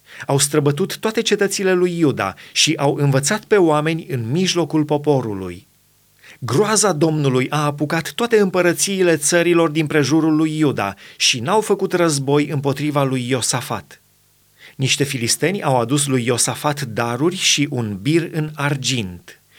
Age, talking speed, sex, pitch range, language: 30-49, 135 wpm, male, 130-170 Hz, Romanian